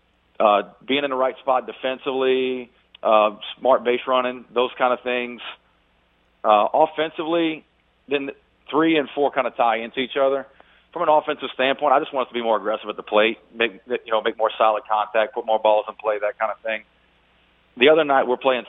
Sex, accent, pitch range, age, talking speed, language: male, American, 105-130 Hz, 40-59, 200 wpm, English